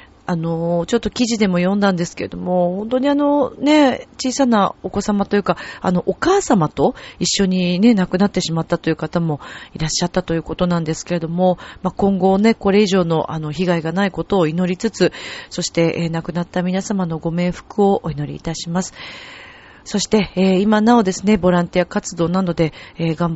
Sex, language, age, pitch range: female, Japanese, 40-59, 165-205 Hz